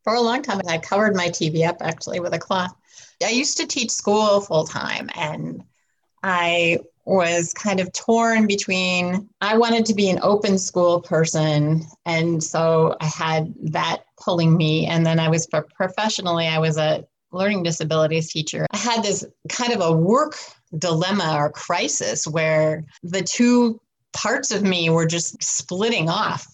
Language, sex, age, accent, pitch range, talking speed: English, female, 30-49, American, 160-205 Hz, 165 wpm